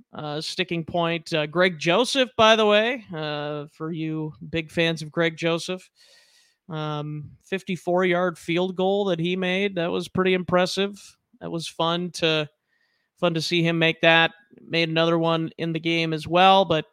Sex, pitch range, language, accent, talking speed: male, 160-185 Hz, English, American, 165 wpm